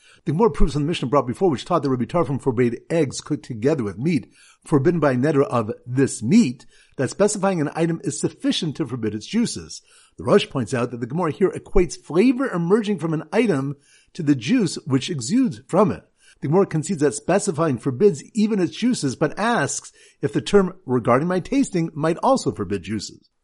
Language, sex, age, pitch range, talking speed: English, male, 50-69, 130-195 Hz, 195 wpm